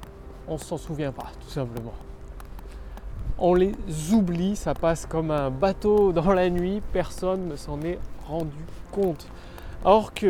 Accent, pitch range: French, 135-205 Hz